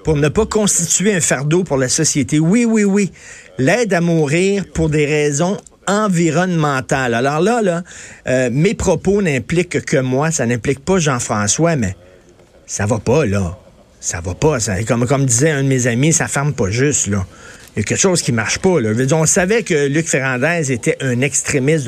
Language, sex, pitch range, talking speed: French, male, 135-175 Hz, 205 wpm